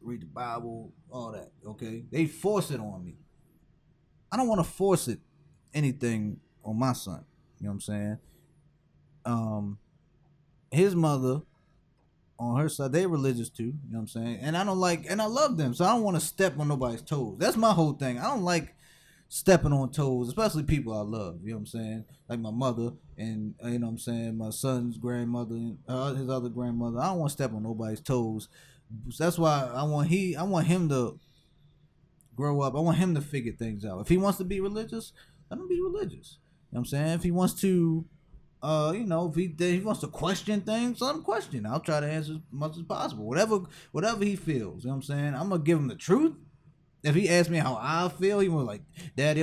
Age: 20-39